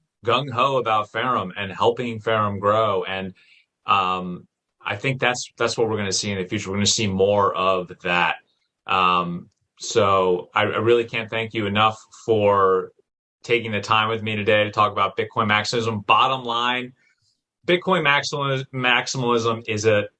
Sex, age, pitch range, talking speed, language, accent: male, 30-49, 95-120 Hz, 165 wpm, English, American